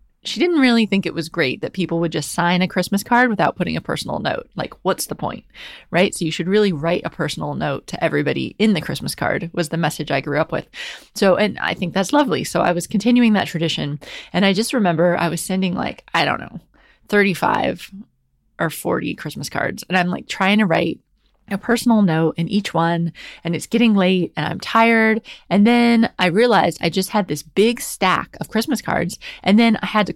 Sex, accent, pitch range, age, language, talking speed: female, American, 175-230 Hz, 20-39, English, 220 wpm